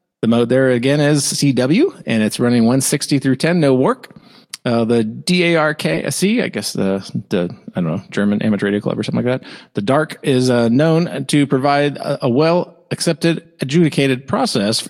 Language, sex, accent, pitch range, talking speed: English, male, American, 125-165 Hz, 175 wpm